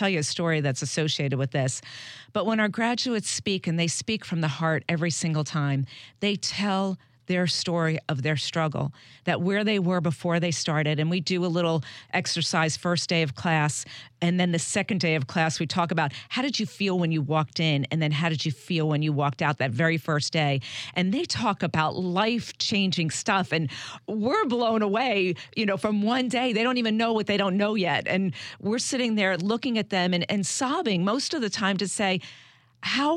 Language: English